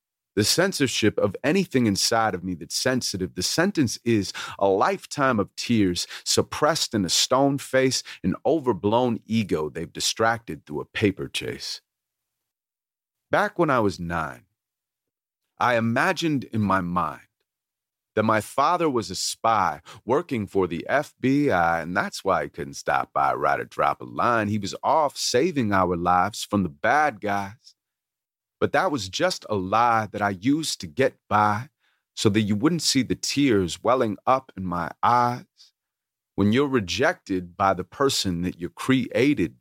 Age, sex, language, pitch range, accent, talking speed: 30-49, male, English, 95-130 Hz, American, 160 wpm